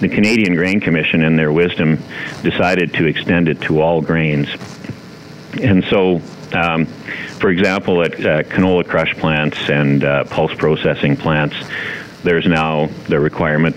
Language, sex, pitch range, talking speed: English, male, 75-85 Hz, 145 wpm